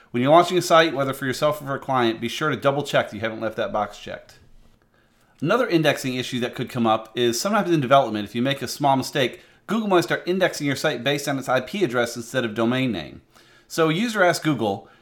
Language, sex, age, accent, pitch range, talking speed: English, male, 30-49, American, 120-160 Hz, 245 wpm